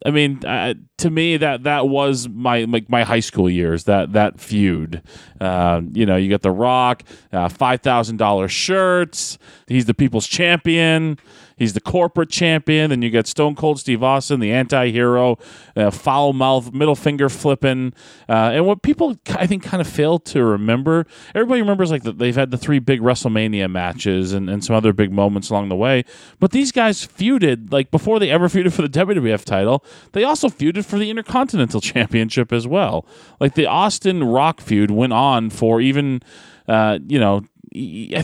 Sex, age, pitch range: male, 30-49, 110-155 Hz